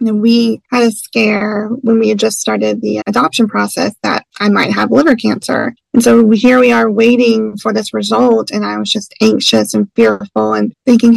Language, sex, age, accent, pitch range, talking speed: English, female, 30-49, American, 210-255 Hz, 200 wpm